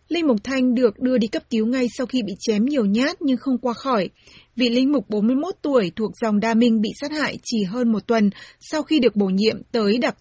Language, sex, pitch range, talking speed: Vietnamese, female, 220-260 Hz, 245 wpm